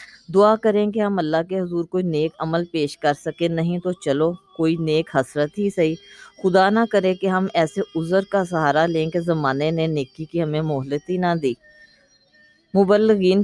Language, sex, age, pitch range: Urdu, female, 20-39, 155-190 Hz